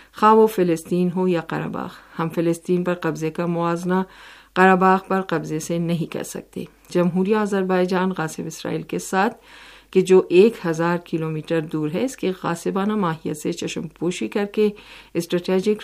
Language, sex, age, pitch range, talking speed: Urdu, female, 50-69, 160-190 Hz, 160 wpm